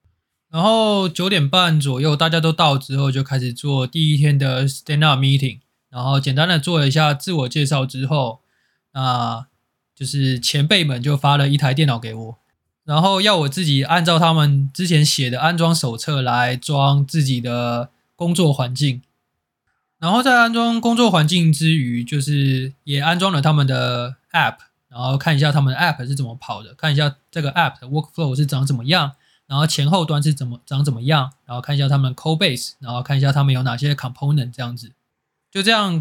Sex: male